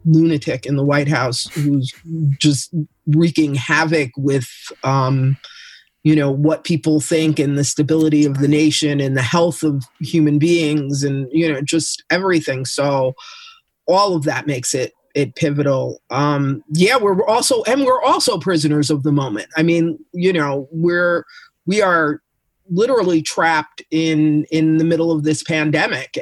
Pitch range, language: 150-175 Hz, English